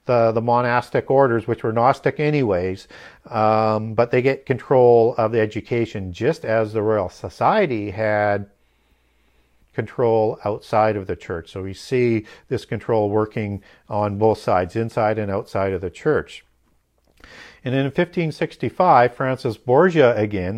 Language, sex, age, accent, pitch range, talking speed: English, male, 50-69, American, 115-145 Hz, 140 wpm